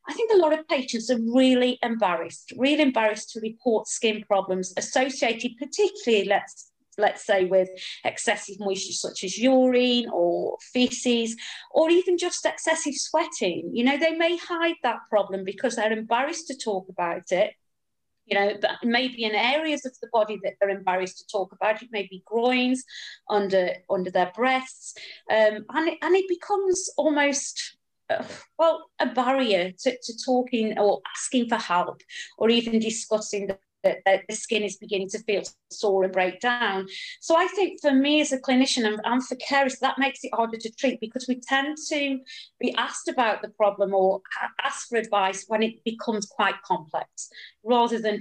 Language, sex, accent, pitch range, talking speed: English, female, British, 200-280 Hz, 170 wpm